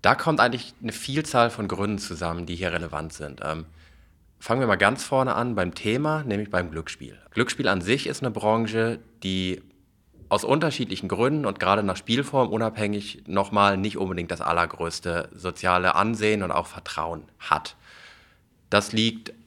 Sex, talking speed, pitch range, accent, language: male, 165 wpm, 90-115 Hz, German, German